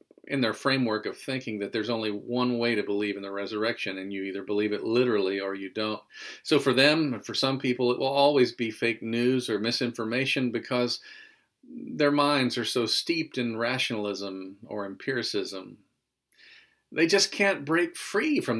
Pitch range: 115-150 Hz